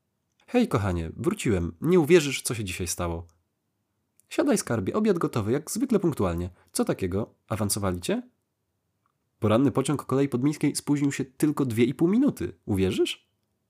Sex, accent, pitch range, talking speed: male, native, 95-125 Hz, 140 wpm